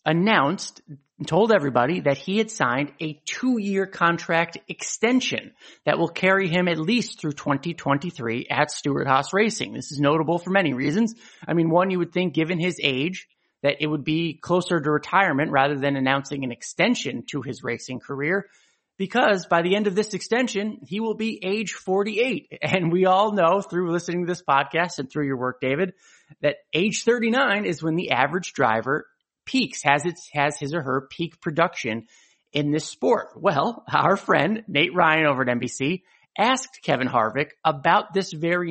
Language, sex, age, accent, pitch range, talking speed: English, male, 30-49, American, 140-185 Hz, 175 wpm